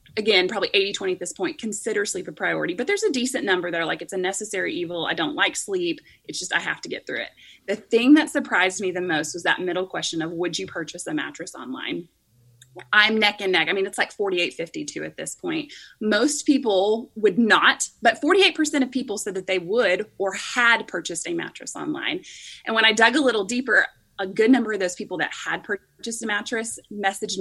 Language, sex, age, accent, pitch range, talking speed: English, female, 20-39, American, 185-250 Hz, 225 wpm